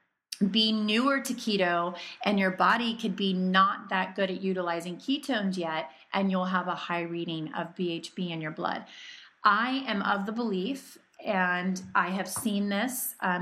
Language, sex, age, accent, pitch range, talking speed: English, female, 30-49, American, 185-220 Hz, 170 wpm